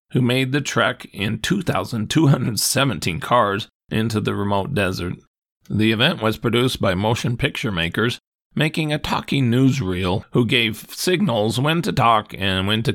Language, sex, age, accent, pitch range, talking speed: English, male, 40-59, American, 95-130 Hz, 150 wpm